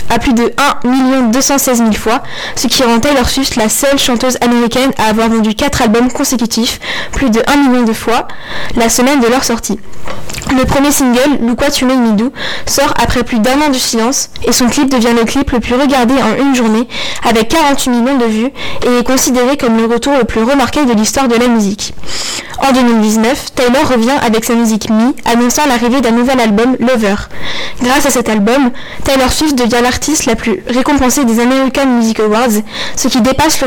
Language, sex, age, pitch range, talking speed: French, female, 10-29, 230-270 Hz, 200 wpm